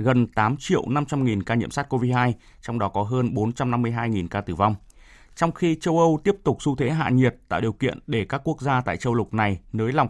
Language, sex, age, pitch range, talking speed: Vietnamese, male, 20-39, 110-140 Hz, 240 wpm